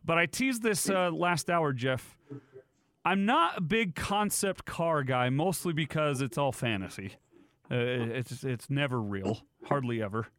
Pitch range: 135-195 Hz